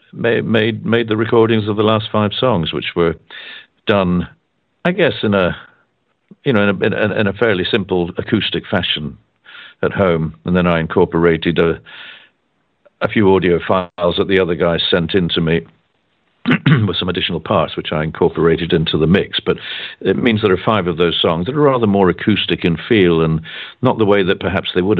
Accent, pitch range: British, 85-100 Hz